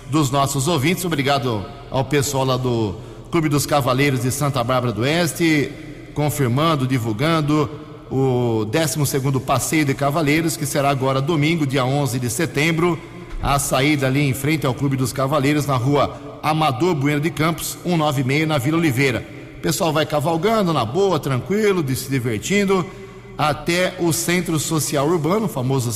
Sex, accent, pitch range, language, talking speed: male, Brazilian, 125-155 Hz, Portuguese, 155 wpm